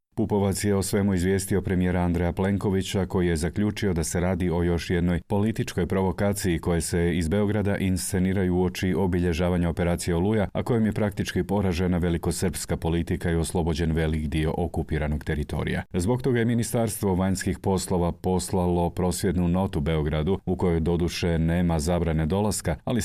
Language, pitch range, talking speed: Croatian, 85-100 Hz, 150 wpm